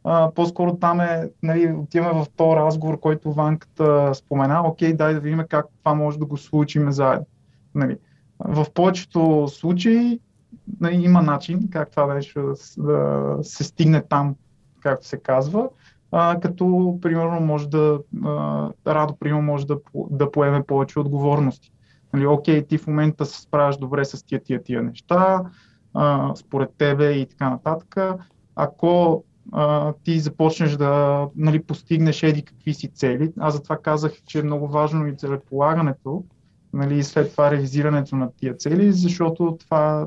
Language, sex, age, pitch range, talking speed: Bulgarian, male, 20-39, 140-165 Hz, 150 wpm